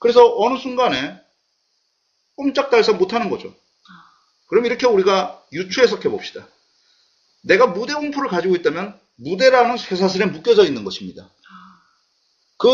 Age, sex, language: 40-59, male, Korean